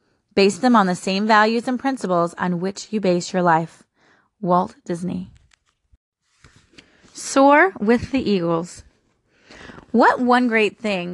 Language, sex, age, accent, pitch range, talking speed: English, female, 30-49, American, 185-250 Hz, 130 wpm